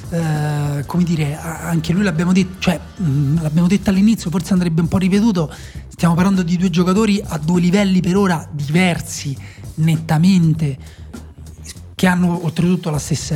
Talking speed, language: 150 wpm, Italian